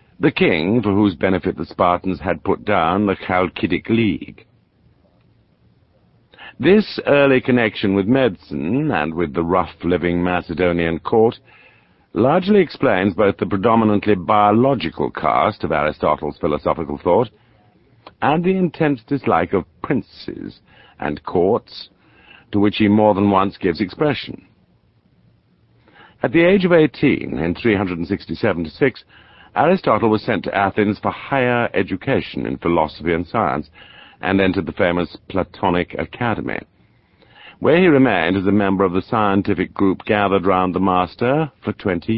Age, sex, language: 50-69, male, English